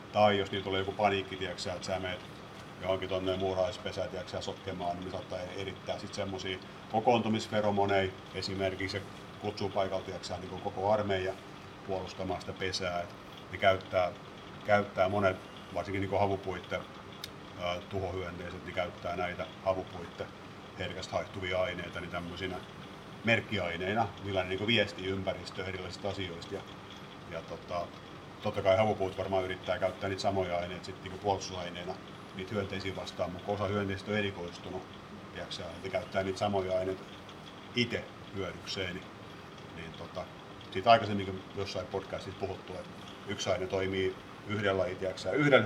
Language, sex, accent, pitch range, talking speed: Finnish, male, native, 95-100 Hz, 140 wpm